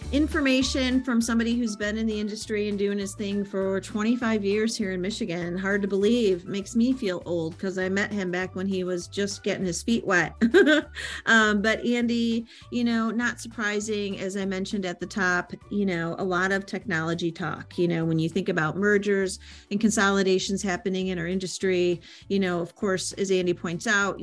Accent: American